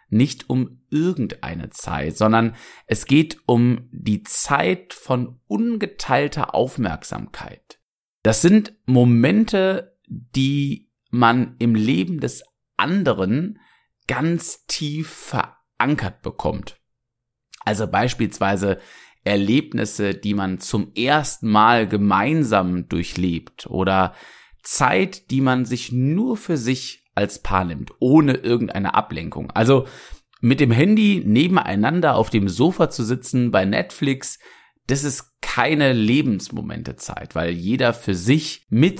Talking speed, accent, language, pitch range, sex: 110 wpm, German, German, 105-140 Hz, male